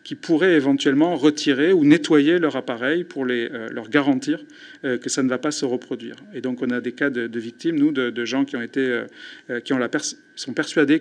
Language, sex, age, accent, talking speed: French, male, 50-69, French, 240 wpm